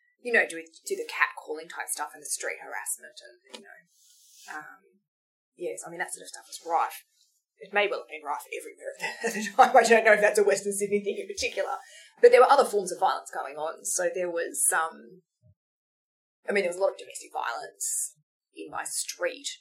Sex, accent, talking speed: female, Australian, 225 wpm